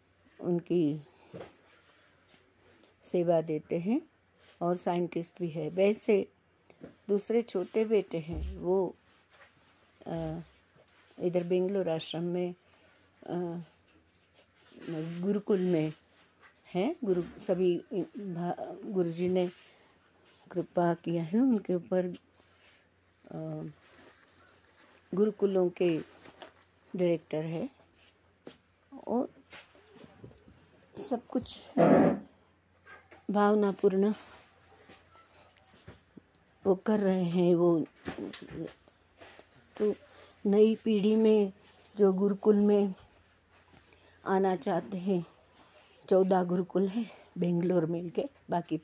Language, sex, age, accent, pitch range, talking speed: Hindi, female, 60-79, native, 160-200 Hz, 75 wpm